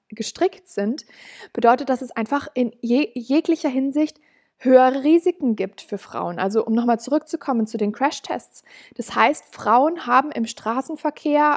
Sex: female